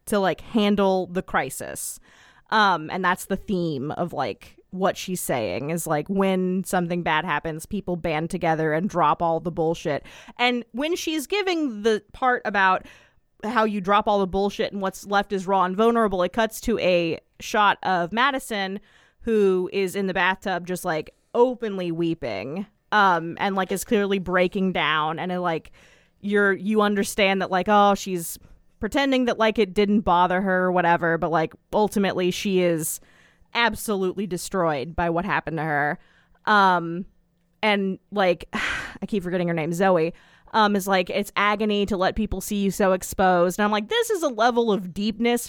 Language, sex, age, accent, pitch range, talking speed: English, female, 20-39, American, 180-220 Hz, 175 wpm